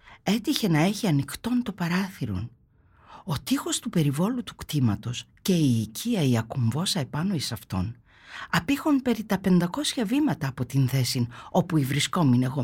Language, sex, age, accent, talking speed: Greek, female, 50-69, native, 145 wpm